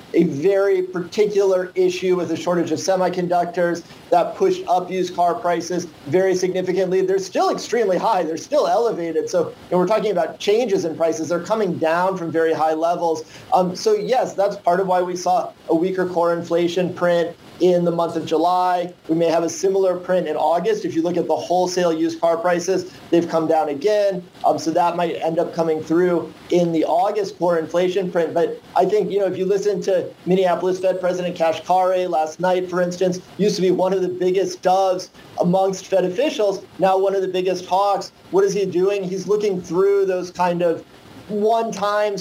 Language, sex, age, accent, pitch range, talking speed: English, male, 40-59, American, 170-195 Hz, 195 wpm